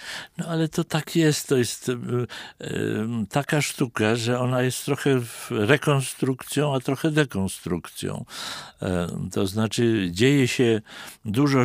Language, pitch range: Polish, 105-130 Hz